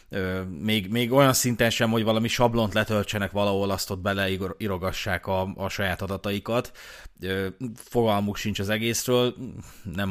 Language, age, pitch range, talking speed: Hungarian, 30-49, 90-110 Hz, 130 wpm